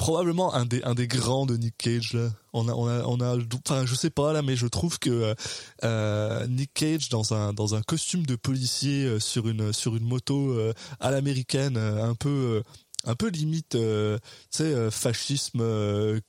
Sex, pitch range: male, 115-140 Hz